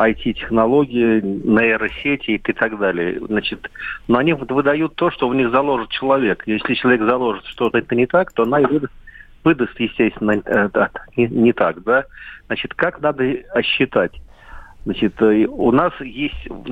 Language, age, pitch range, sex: Russian, 40-59, 110-135 Hz, male